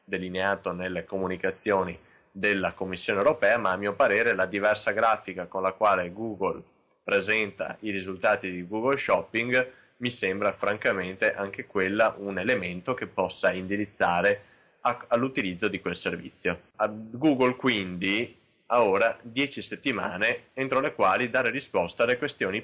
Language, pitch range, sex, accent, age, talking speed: Italian, 90-110 Hz, male, native, 20-39, 135 wpm